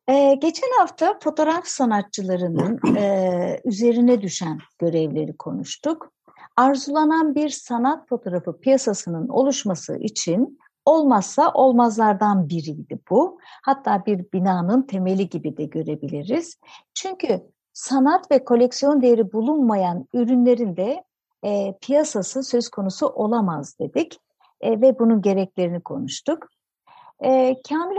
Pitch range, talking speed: 190-280 Hz, 95 wpm